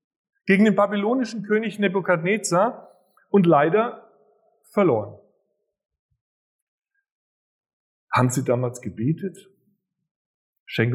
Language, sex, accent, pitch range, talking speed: German, male, German, 115-185 Hz, 70 wpm